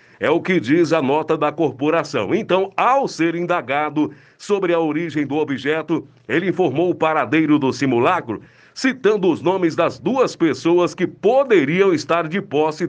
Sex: male